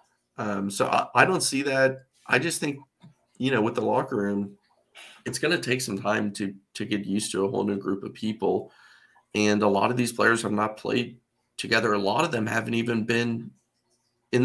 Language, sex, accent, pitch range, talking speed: English, male, American, 100-125 Hz, 210 wpm